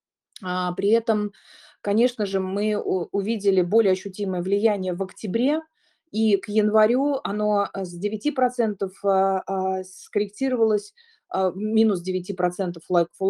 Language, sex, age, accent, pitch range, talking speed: Russian, female, 30-49, native, 190-220 Hz, 90 wpm